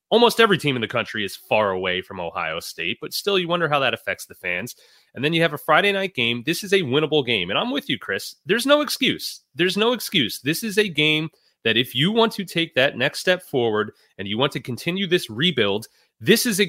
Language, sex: English, male